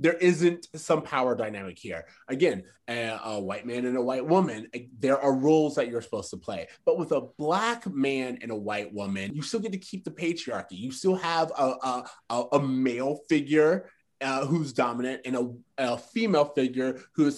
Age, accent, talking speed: 20-39, American, 200 wpm